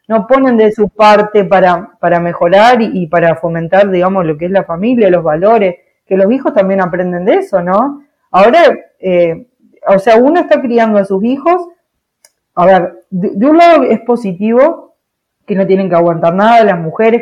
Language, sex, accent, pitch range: Spanish, female, Argentinian, 175-220 Hz